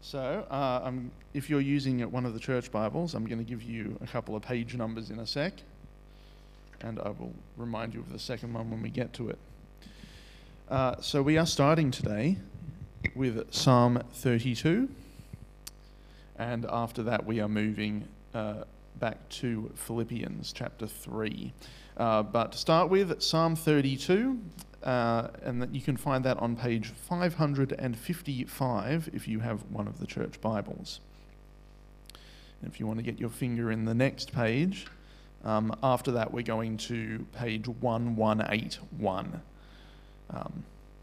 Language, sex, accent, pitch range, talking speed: English, male, Australian, 110-135 Hz, 160 wpm